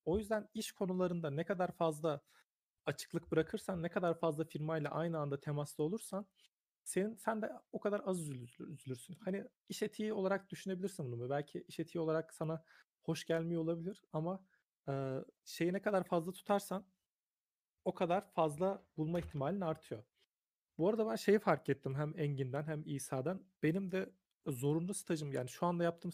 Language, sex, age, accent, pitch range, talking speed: Turkish, male, 40-59, native, 150-185 Hz, 160 wpm